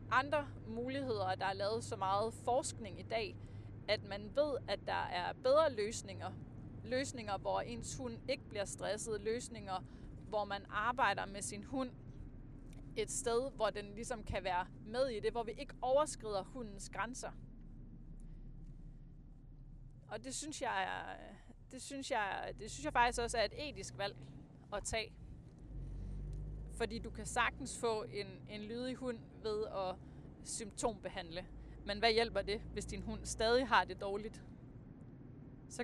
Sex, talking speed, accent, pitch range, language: female, 150 wpm, native, 140-235 Hz, Danish